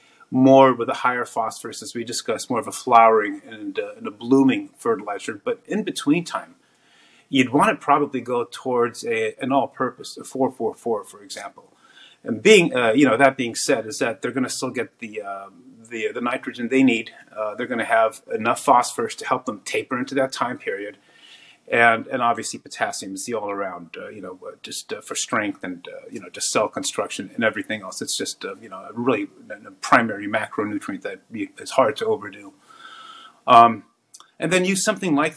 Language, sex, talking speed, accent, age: English, male, 195 wpm, American, 30-49